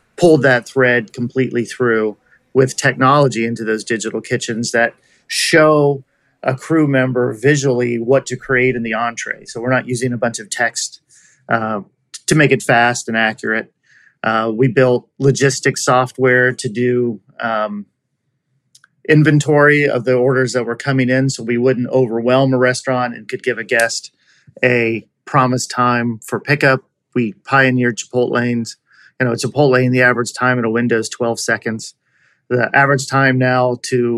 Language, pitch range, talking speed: English, 120-135 Hz, 165 wpm